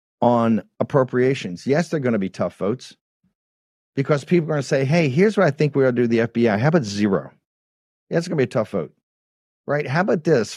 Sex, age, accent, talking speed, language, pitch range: male, 50-69, American, 225 wpm, English, 115-150 Hz